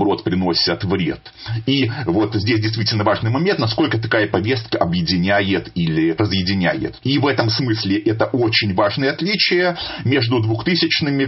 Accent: native